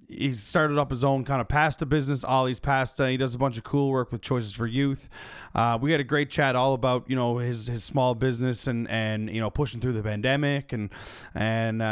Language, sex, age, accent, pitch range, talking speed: English, male, 20-39, American, 115-140 Hz, 230 wpm